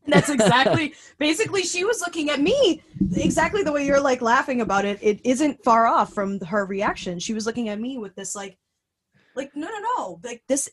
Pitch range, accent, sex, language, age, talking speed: 180-245 Hz, American, female, English, 20-39, 215 wpm